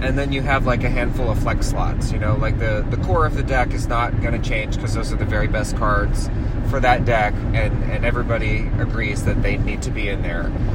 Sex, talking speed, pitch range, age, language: male, 250 wpm, 110-130 Hz, 30-49, English